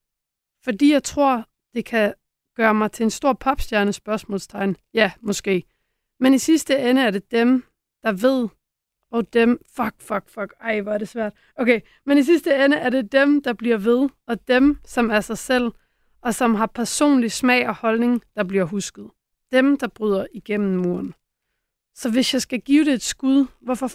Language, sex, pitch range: Danish, female, 205-250 Hz